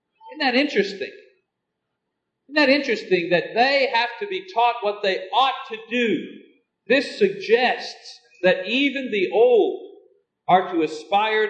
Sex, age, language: male, 50-69, English